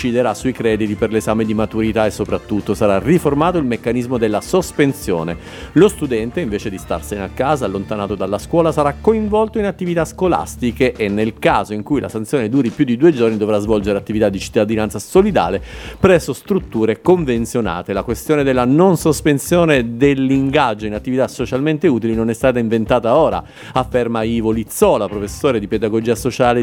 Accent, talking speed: native, 165 wpm